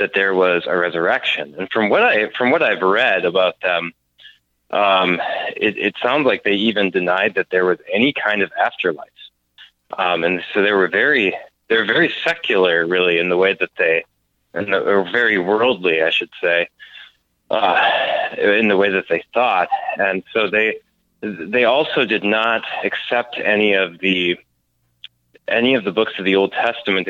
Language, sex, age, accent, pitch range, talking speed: English, male, 30-49, American, 85-120 Hz, 175 wpm